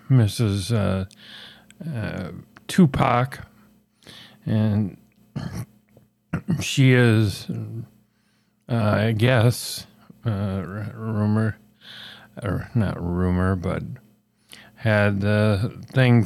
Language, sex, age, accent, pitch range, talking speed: English, male, 50-69, American, 110-125 Hz, 70 wpm